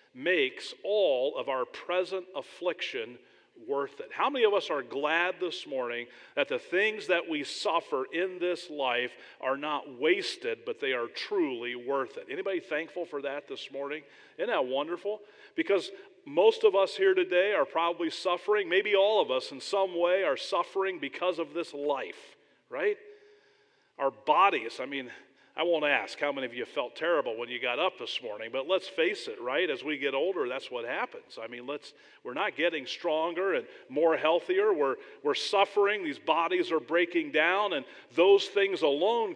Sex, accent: male, American